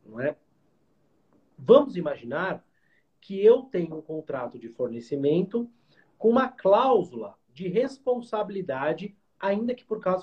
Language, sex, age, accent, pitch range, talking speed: Portuguese, male, 40-59, Brazilian, 145-200 Hz, 105 wpm